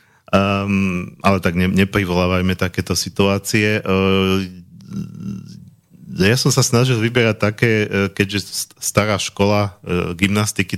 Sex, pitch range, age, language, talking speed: male, 90-105 Hz, 40-59, Slovak, 115 wpm